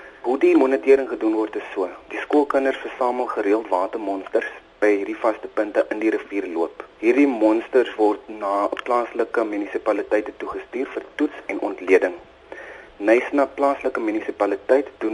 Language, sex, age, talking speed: Dutch, male, 30-49, 145 wpm